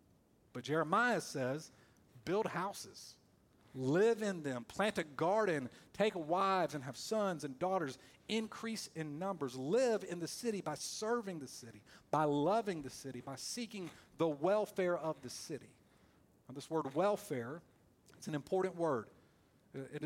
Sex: male